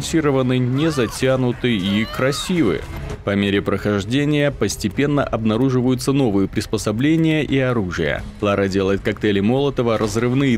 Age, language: 30-49, Russian